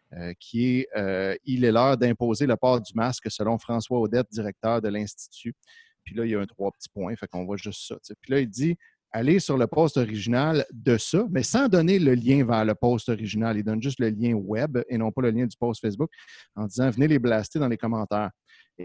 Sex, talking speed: male, 250 wpm